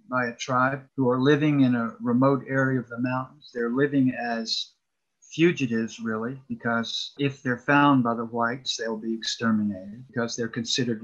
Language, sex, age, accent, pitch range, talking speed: English, male, 50-69, American, 120-140 Hz, 170 wpm